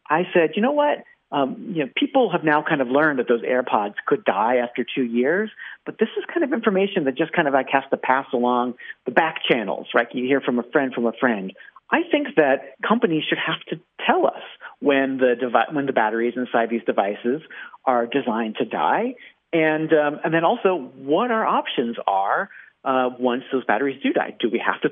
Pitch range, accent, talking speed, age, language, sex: 125-170 Hz, American, 220 wpm, 40-59, English, male